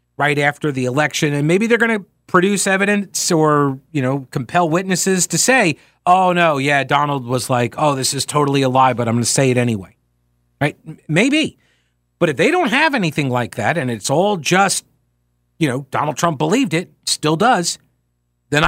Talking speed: 195 wpm